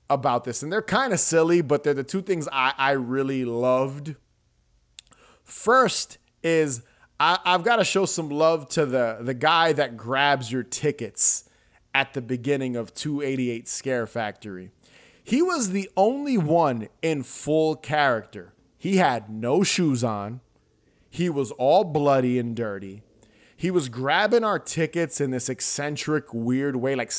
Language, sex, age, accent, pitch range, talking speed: English, male, 20-39, American, 125-160 Hz, 150 wpm